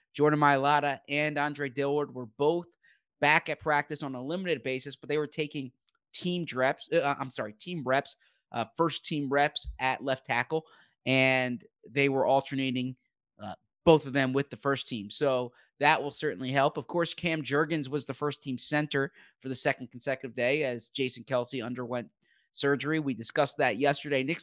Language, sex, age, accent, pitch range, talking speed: English, male, 20-39, American, 135-160 Hz, 175 wpm